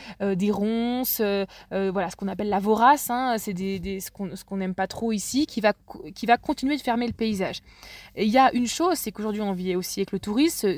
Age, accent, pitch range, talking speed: 20-39, French, 200-255 Hz, 250 wpm